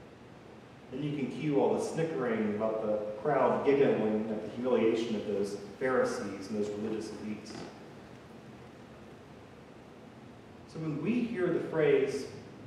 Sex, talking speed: male, 130 wpm